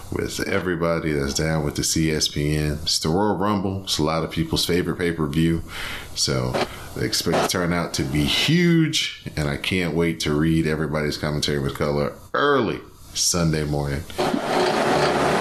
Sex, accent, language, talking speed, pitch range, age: male, American, English, 160 wpm, 75-90 Hz, 30-49